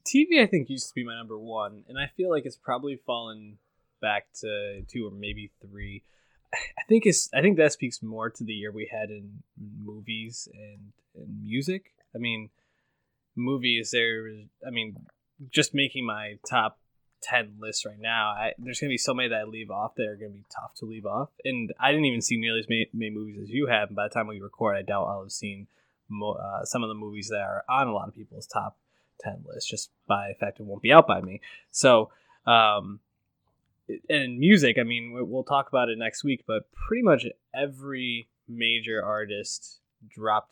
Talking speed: 210 wpm